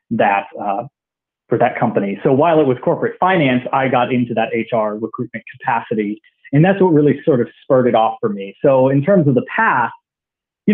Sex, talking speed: male, 200 wpm